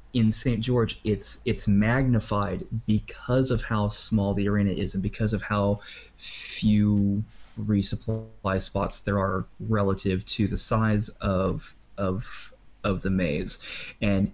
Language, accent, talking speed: English, American, 135 wpm